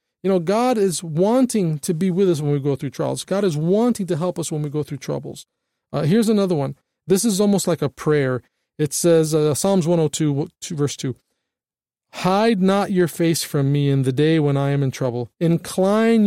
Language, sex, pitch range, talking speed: English, male, 150-190 Hz, 210 wpm